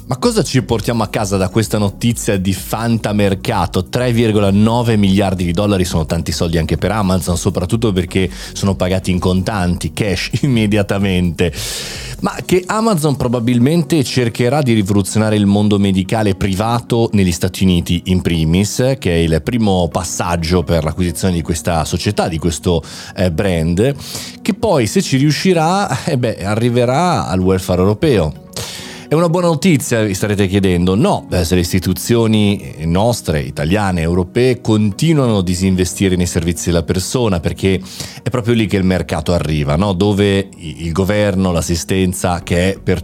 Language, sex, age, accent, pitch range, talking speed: Italian, male, 30-49, native, 90-115 Hz, 145 wpm